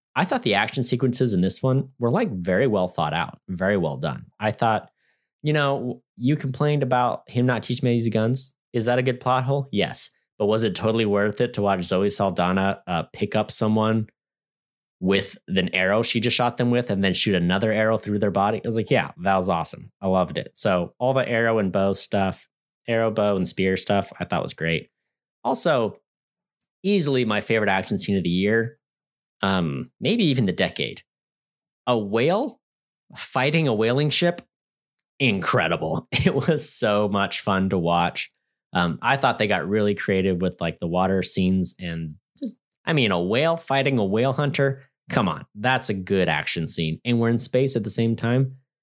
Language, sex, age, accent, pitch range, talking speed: English, male, 20-39, American, 95-130 Hz, 195 wpm